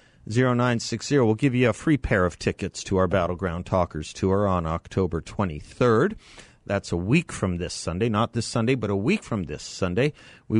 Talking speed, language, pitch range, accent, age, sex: 185 wpm, English, 90-120 Hz, American, 40-59, male